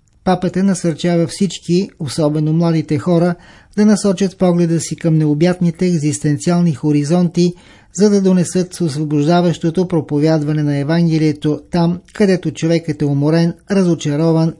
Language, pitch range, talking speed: Bulgarian, 155-180 Hz, 110 wpm